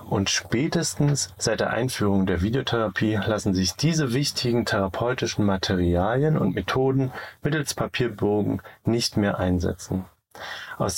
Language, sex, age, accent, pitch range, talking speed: German, male, 40-59, German, 95-135 Hz, 115 wpm